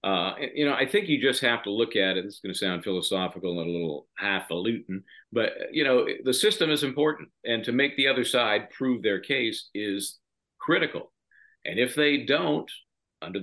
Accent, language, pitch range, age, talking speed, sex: American, English, 100-145 Hz, 50-69, 195 wpm, male